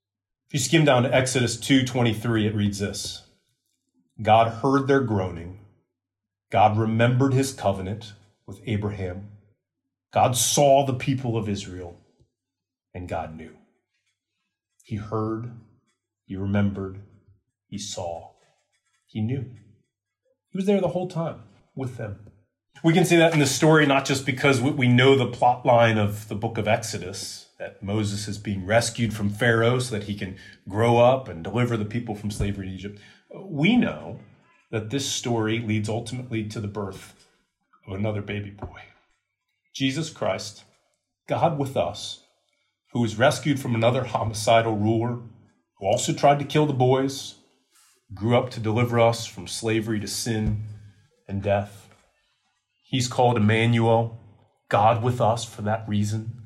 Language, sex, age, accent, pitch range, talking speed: English, male, 30-49, American, 105-125 Hz, 150 wpm